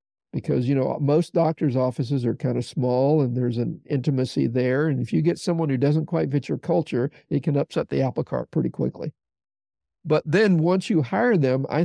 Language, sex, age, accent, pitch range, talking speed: English, male, 50-69, American, 125-160 Hz, 210 wpm